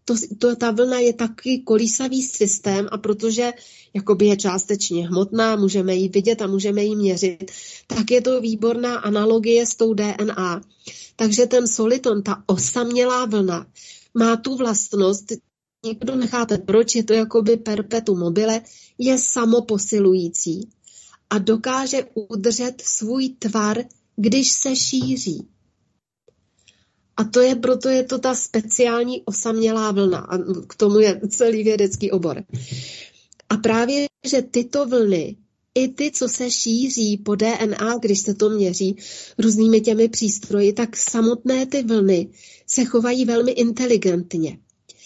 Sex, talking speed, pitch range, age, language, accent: female, 135 wpm, 205-245 Hz, 30-49, Czech, native